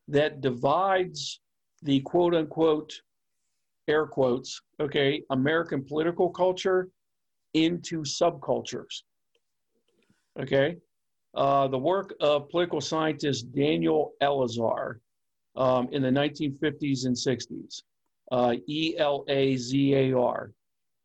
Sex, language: male, English